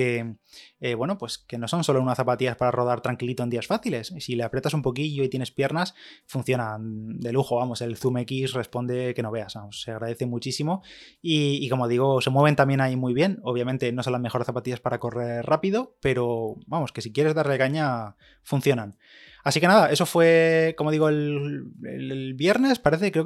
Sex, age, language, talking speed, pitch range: male, 20-39, Spanish, 200 wpm, 125-145 Hz